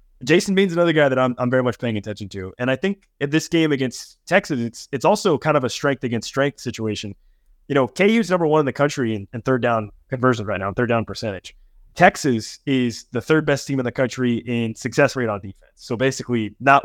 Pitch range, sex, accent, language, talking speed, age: 120-150 Hz, male, American, English, 235 wpm, 20-39